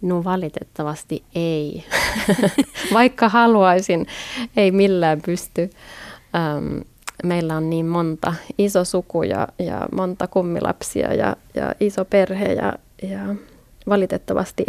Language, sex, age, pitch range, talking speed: Finnish, female, 20-39, 170-210 Hz, 100 wpm